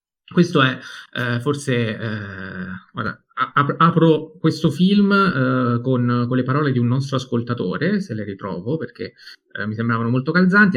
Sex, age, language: male, 30-49, Italian